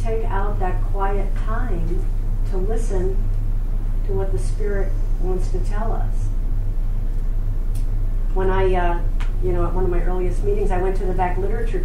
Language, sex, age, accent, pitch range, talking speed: English, female, 50-69, American, 100-105 Hz, 160 wpm